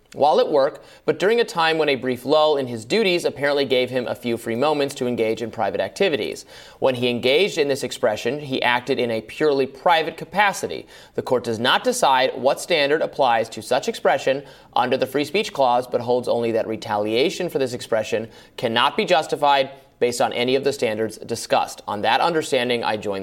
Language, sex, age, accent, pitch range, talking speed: English, male, 30-49, American, 120-165 Hz, 200 wpm